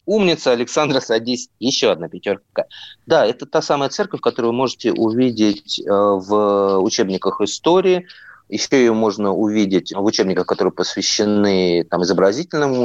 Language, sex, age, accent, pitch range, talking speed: Russian, male, 30-49, native, 100-135 Hz, 130 wpm